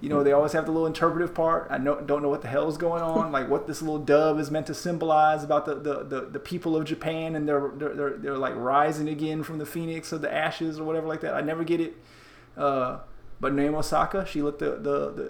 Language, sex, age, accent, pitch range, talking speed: English, male, 20-39, American, 150-185 Hz, 260 wpm